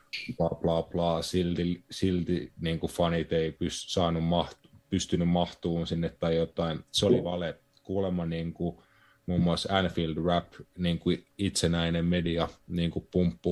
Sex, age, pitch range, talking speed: male, 30-49, 85-90 Hz, 135 wpm